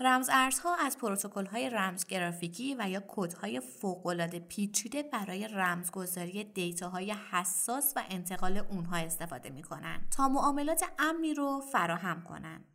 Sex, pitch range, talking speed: female, 180-255 Hz, 130 wpm